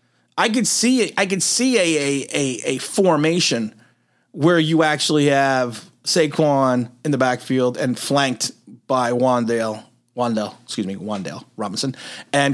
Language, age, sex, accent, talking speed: English, 30-49, male, American, 140 wpm